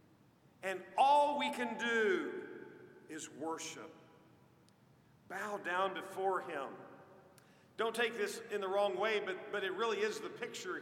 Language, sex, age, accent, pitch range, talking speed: English, male, 50-69, American, 205-280 Hz, 140 wpm